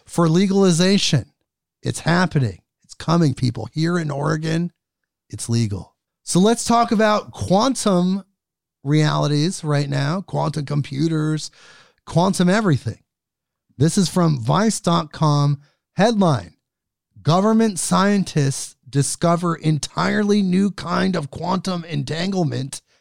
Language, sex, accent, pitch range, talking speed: English, male, American, 145-190 Hz, 100 wpm